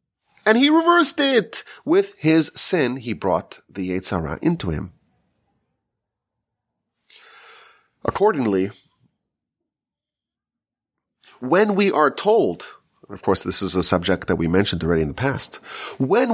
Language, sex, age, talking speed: English, male, 30-49, 120 wpm